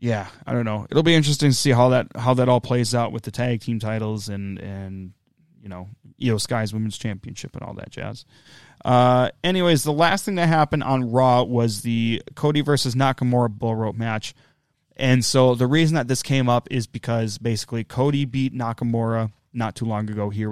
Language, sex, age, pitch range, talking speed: English, male, 20-39, 110-135 Hz, 200 wpm